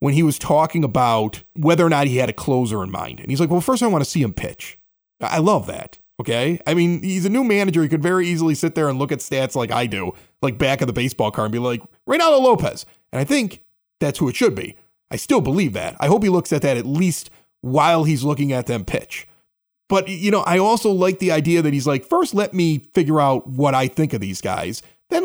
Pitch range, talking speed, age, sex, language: 140-205 Hz, 255 wpm, 30-49, male, English